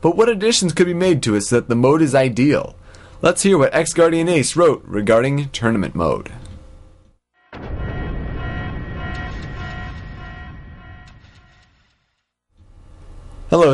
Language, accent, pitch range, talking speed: English, American, 100-165 Hz, 105 wpm